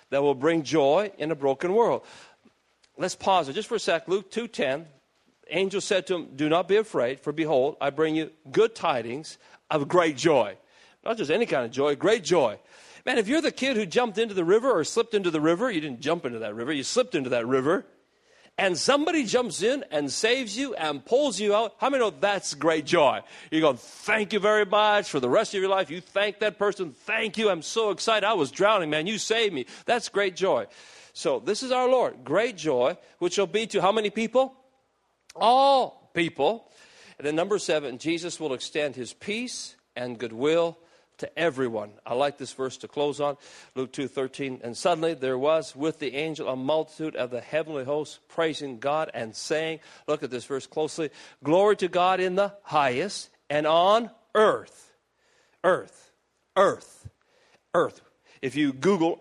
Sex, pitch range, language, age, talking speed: male, 150-215 Hz, English, 40-59, 200 wpm